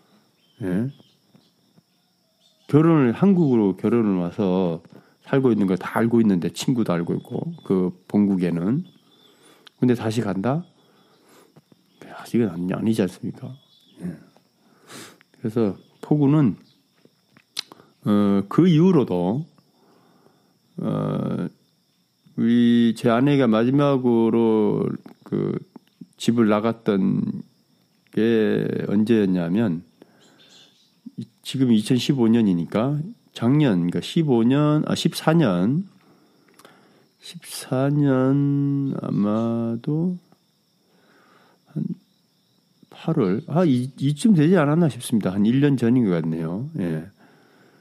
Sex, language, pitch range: male, Korean, 110-170 Hz